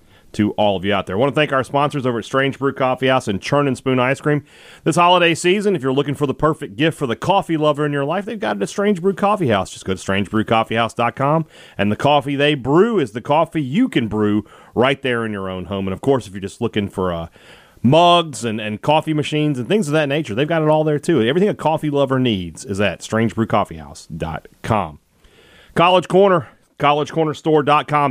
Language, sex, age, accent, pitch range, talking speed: English, male, 40-59, American, 115-155 Hz, 220 wpm